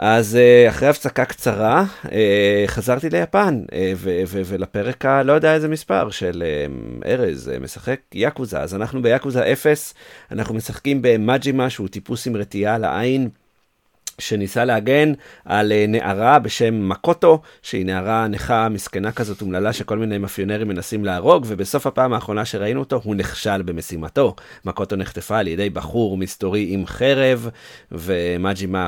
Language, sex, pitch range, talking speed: Hebrew, male, 95-125 Hz, 135 wpm